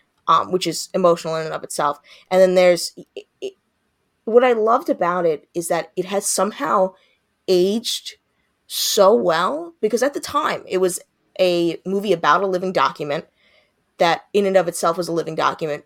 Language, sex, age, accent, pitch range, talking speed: English, female, 20-39, American, 165-200 Hz, 170 wpm